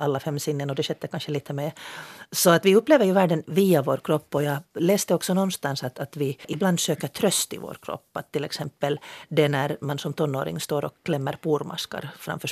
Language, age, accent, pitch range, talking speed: Finnish, 40-59, native, 150-190 Hz, 215 wpm